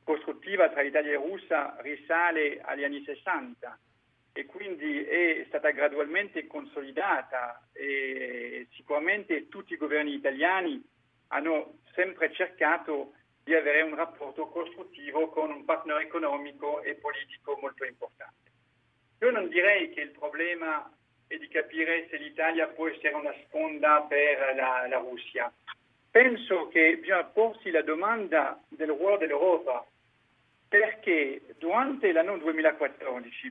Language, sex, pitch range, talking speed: Italian, male, 150-235 Hz, 125 wpm